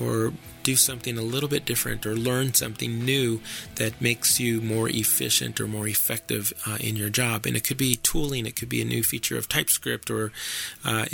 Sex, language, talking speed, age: male, English, 205 wpm, 30-49